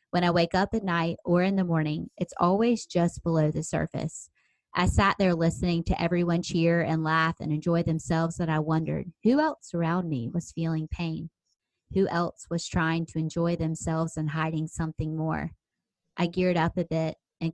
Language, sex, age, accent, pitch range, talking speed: English, female, 20-39, American, 160-185 Hz, 190 wpm